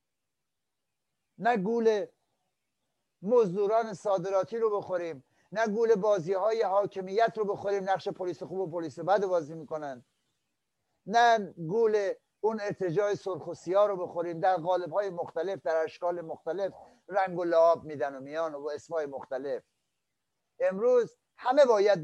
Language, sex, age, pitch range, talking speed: Persian, male, 60-79, 155-195 Hz, 130 wpm